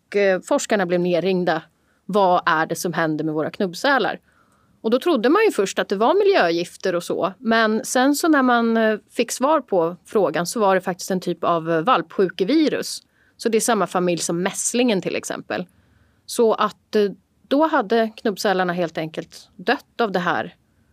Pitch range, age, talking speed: 175-230 Hz, 30-49, 175 wpm